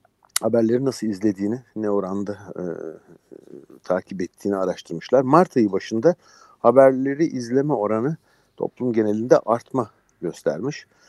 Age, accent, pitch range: 50-69, native, 105-135 Hz